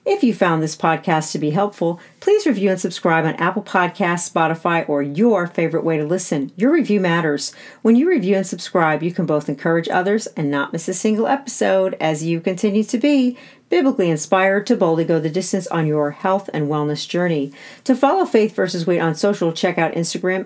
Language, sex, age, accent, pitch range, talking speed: English, female, 50-69, American, 170-235 Hz, 200 wpm